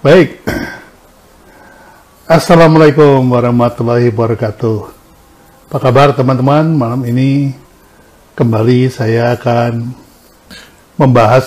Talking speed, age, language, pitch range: 70 wpm, 50-69, Indonesian, 120-145 Hz